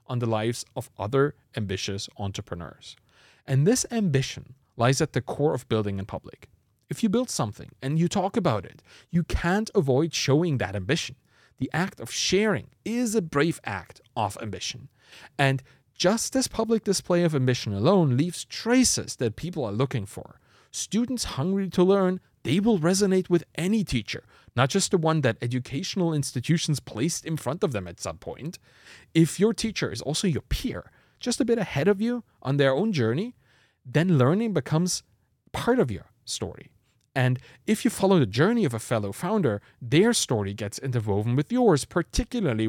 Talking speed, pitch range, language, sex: 175 wpm, 115-180 Hz, English, male